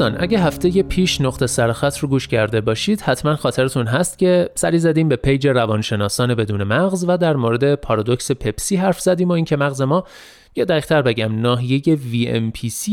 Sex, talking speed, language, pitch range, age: male, 170 wpm, Persian, 120-175 Hz, 30-49